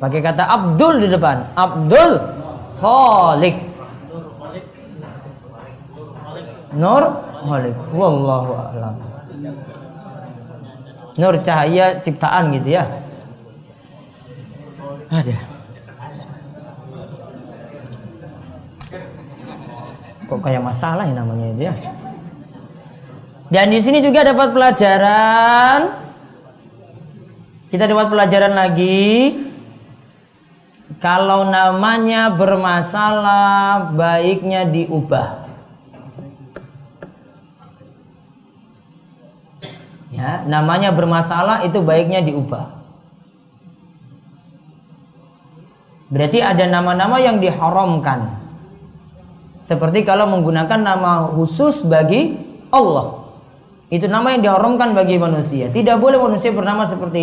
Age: 20-39